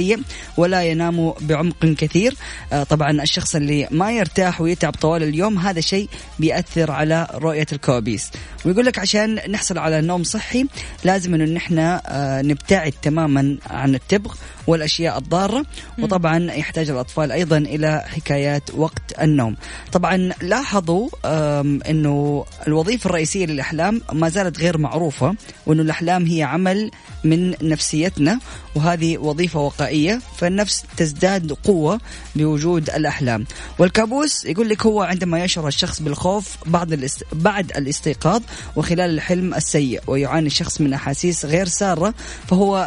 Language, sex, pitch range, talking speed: Arabic, female, 150-180 Hz, 120 wpm